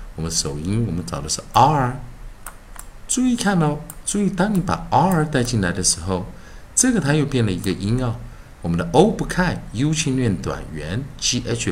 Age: 50-69